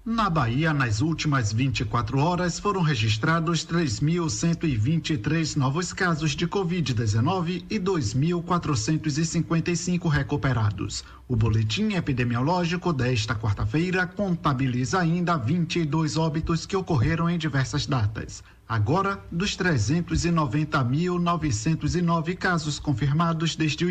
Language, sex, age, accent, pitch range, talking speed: Portuguese, male, 50-69, Brazilian, 135-180 Hz, 95 wpm